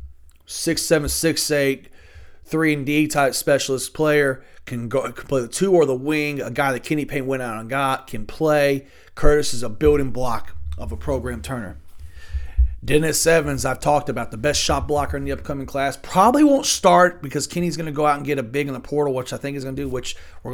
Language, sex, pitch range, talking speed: English, male, 85-140 Hz, 225 wpm